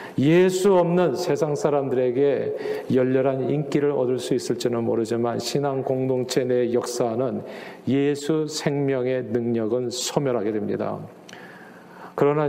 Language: Korean